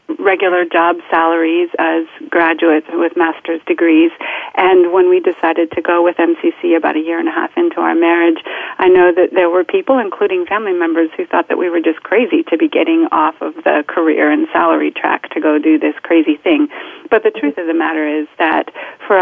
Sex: female